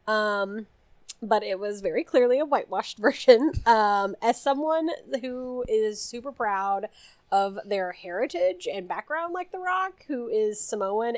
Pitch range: 195-255 Hz